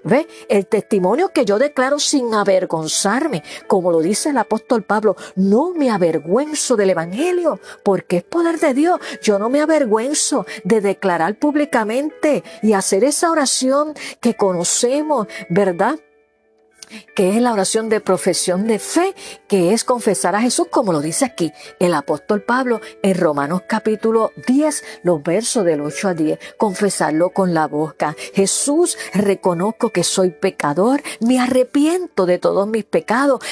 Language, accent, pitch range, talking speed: Spanish, American, 190-280 Hz, 150 wpm